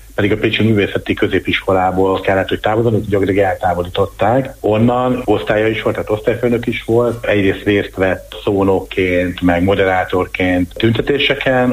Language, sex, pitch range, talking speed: Hungarian, male, 95-115 Hz, 130 wpm